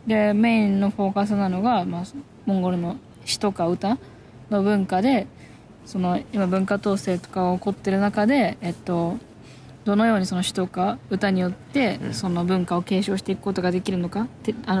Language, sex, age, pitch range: Japanese, female, 20-39, 185-220 Hz